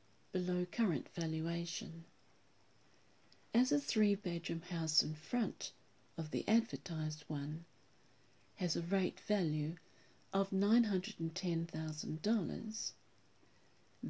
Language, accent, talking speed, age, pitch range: English, British, 80 wpm, 50-69, 165-210 Hz